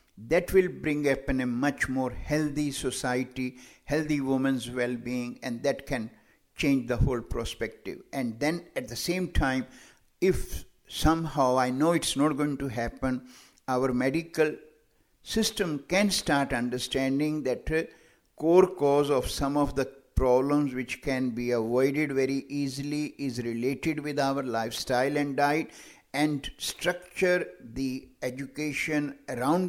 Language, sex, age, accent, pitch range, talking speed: English, male, 60-79, Indian, 130-155 Hz, 135 wpm